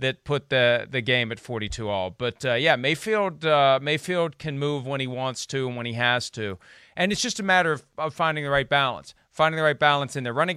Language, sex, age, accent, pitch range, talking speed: English, male, 40-59, American, 120-155 Hz, 245 wpm